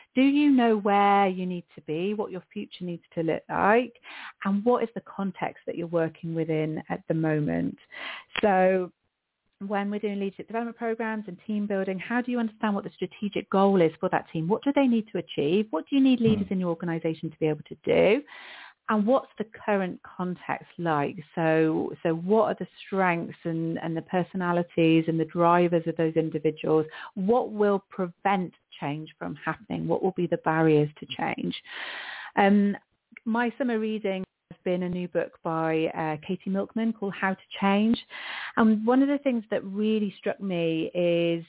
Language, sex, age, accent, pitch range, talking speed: English, female, 40-59, British, 165-210 Hz, 185 wpm